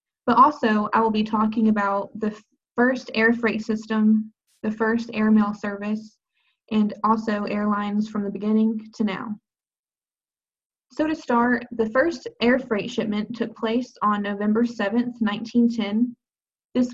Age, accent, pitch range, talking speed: 20-39, American, 210-235 Hz, 140 wpm